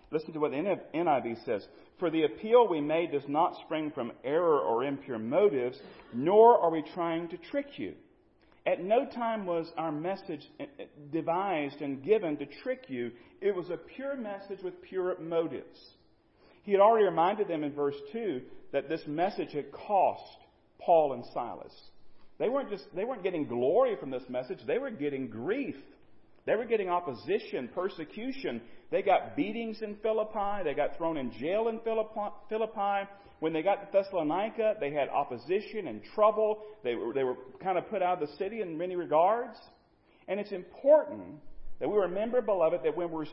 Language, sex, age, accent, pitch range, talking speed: English, male, 40-59, American, 165-225 Hz, 175 wpm